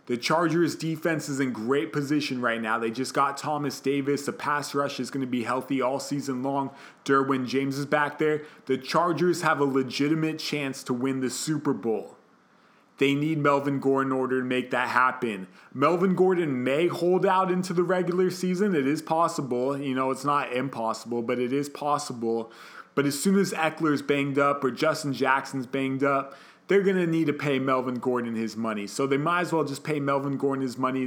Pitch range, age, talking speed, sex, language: 130-155 Hz, 30-49, 205 wpm, male, English